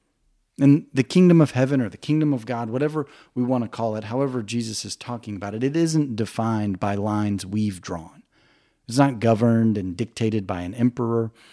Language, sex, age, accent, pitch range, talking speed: English, male, 40-59, American, 105-130 Hz, 195 wpm